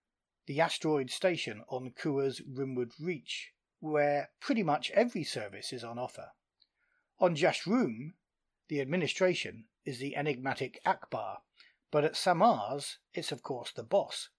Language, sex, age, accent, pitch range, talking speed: English, male, 30-49, British, 130-160 Hz, 130 wpm